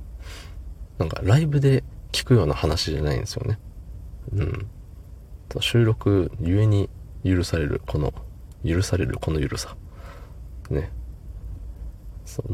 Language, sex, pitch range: Japanese, male, 80-105 Hz